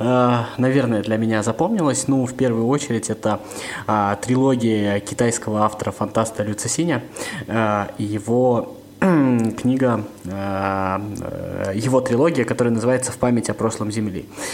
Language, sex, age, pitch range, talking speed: Russian, male, 20-39, 105-125 Hz, 110 wpm